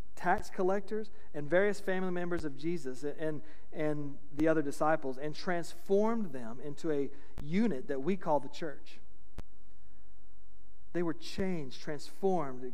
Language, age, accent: English, 40-59, American